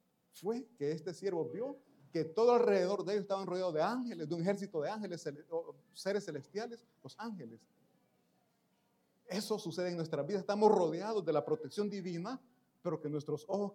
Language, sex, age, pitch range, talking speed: Italian, male, 30-49, 155-210 Hz, 165 wpm